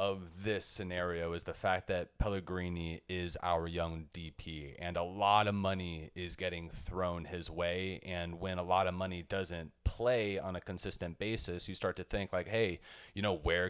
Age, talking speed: 30-49, 190 wpm